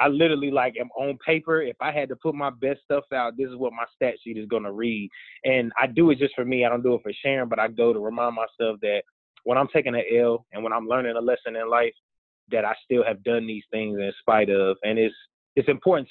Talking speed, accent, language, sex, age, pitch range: 270 wpm, American, English, male, 20-39, 110-135 Hz